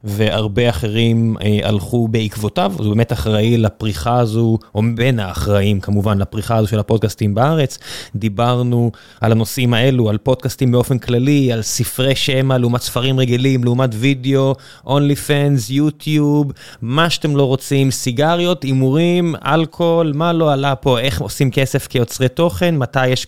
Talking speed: 145 wpm